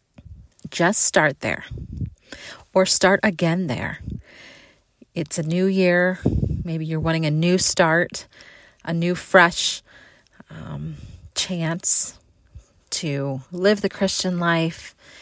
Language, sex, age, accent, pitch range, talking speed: English, female, 40-59, American, 155-200 Hz, 105 wpm